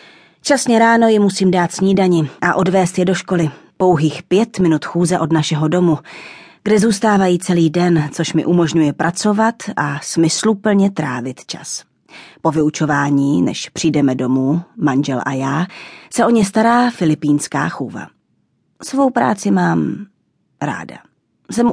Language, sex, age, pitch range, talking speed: Czech, female, 30-49, 155-195 Hz, 135 wpm